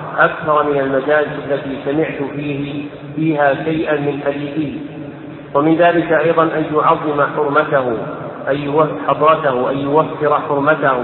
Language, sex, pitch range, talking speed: Arabic, male, 140-155 Hz, 115 wpm